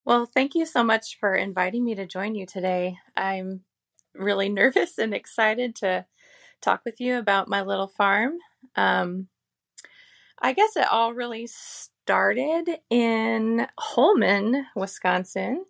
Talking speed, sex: 135 wpm, female